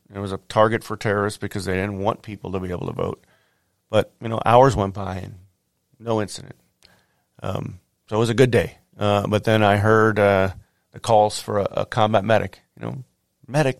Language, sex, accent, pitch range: English, male, American, 100-125 Hz